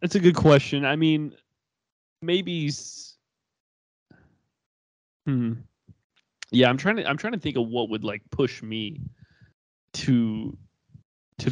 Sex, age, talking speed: male, 20-39, 125 wpm